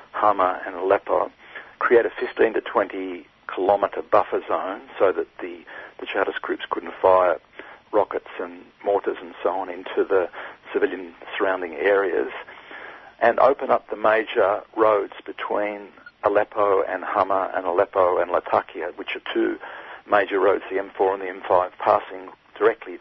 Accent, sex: Australian, male